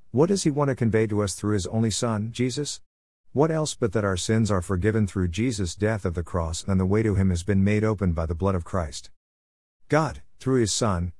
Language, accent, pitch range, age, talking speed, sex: English, American, 90-110 Hz, 50-69, 240 wpm, male